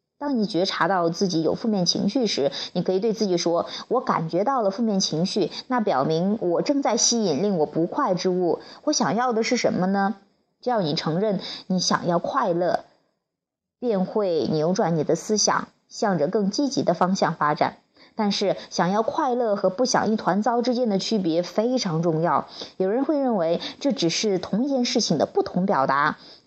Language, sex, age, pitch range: Chinese, female, 30-49, 175-240 Hz